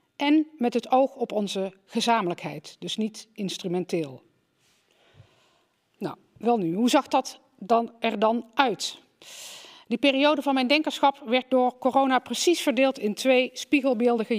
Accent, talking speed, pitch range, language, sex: Dutch, 140 wpm, 215-265 Hz, Dutch, female